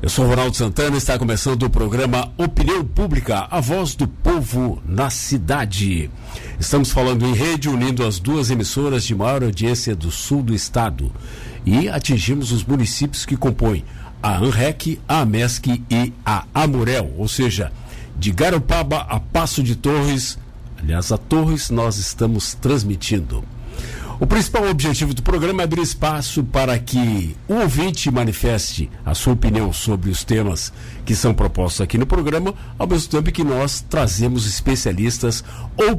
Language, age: Portuguese, 60-79